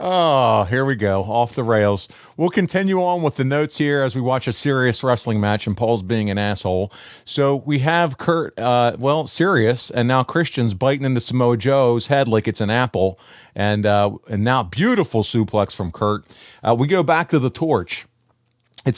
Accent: American